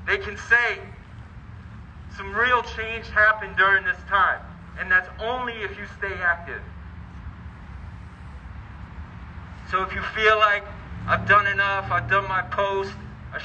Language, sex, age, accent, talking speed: English, male, 40-59, American, 135 wpm